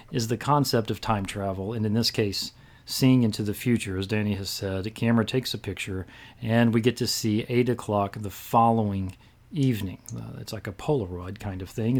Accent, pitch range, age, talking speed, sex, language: American, 105-135 Hz, 40-59, 200 wpm, male, English